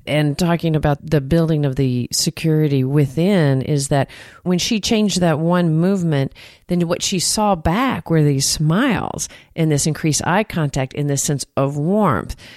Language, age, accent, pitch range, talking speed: English, 40-59, American, 140-185 Hz, 165 wpm